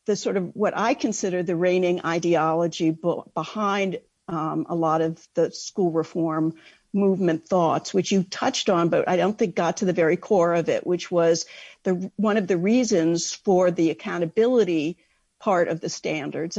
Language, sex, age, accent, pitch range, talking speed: English, female, 50-69, American, 170-205 Hz, 175 wpm